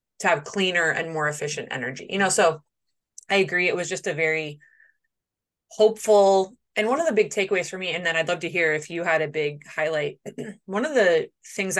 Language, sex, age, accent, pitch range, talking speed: English, female, 20-39, American, 160-210 Hz, 215 wpm